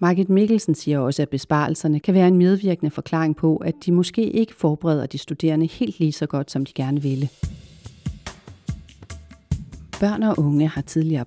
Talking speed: 170 wpm